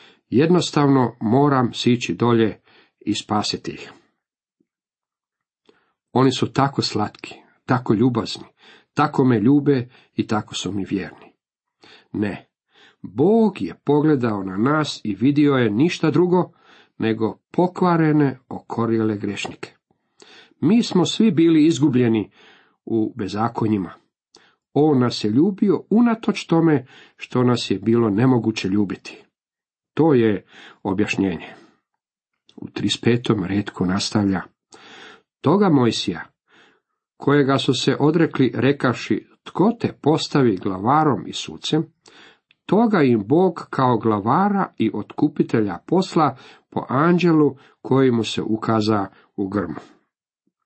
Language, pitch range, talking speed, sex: Croatian, 110-150 Hz, 105 wpm, male